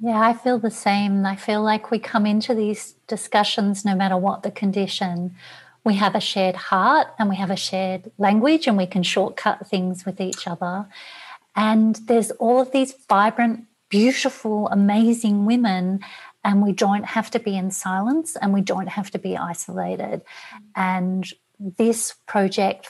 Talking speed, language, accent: 170 wpm, English, Australian